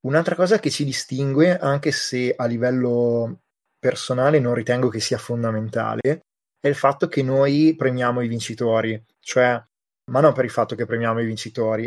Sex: male